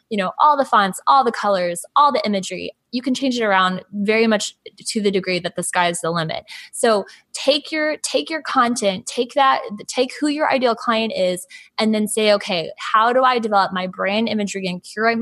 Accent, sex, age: American, female, 20-39